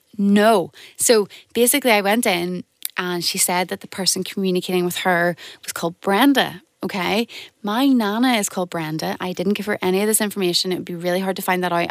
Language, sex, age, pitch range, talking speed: English, female, 20-39, 180-230 Hz, 205 wpm